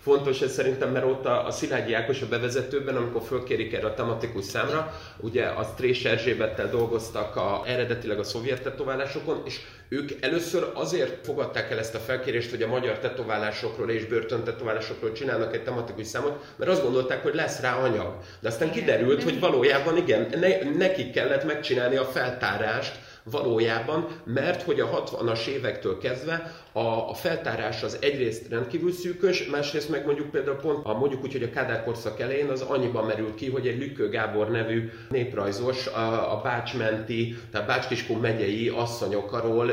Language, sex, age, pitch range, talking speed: Hungarian, male, 30-49, 110-160 Hz, 160 wpm